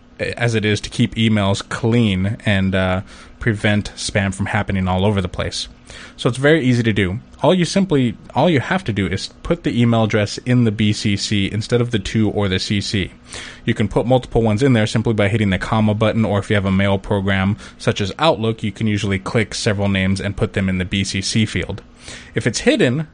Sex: male